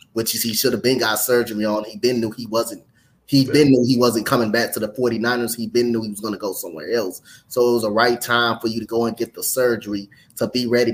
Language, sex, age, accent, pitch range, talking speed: English, male, 20-39, American, 110-120 Hz, 270 wpm